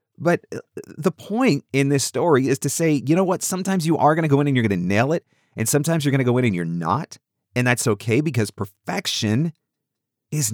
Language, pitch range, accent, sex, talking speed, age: English, 110-155 Hz, American, male, 235 wpm, 40-59